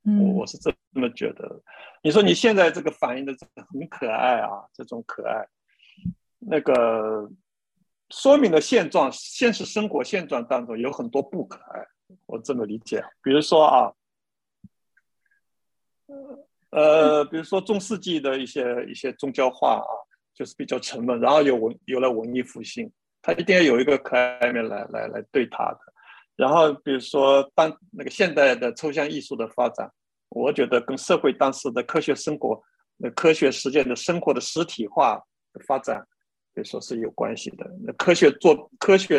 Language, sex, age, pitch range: Chinese, male, 60-79, 135-210 Hz